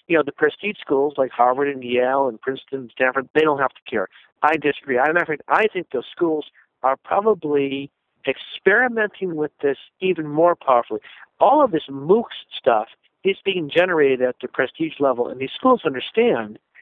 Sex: male